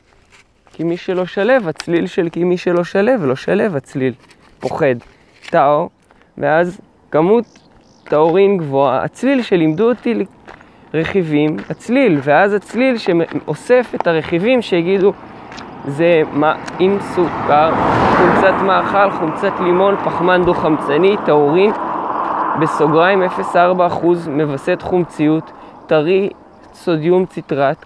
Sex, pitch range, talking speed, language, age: male, 155-200 Hz, 105 wpm, English, 20-39